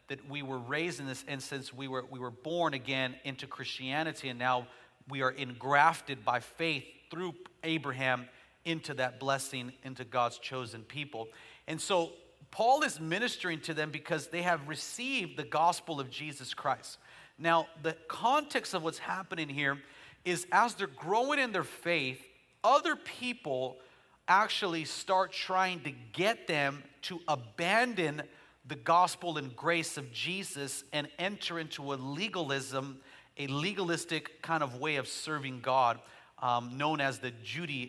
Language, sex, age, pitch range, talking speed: English, male, 40-59, 130-165 Hz, 150 wpm